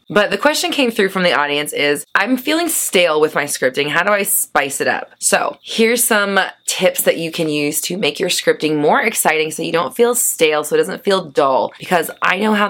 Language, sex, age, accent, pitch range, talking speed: English, female, 20-39, American, 135-190 Hz, 230 wpm